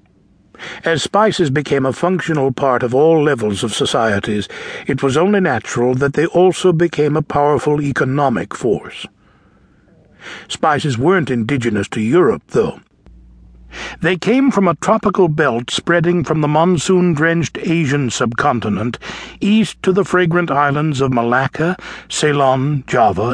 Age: 60-79